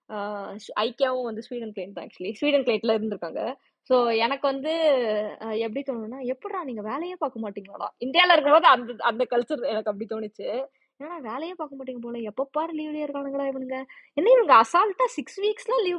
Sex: female